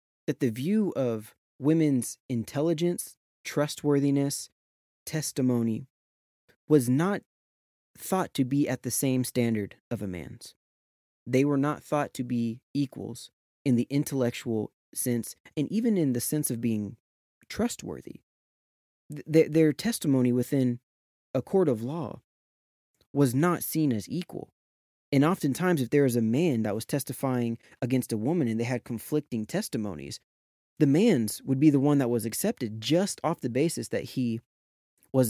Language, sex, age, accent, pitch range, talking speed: English, male, 20-39, American, 110-145 Hz, 145 wpm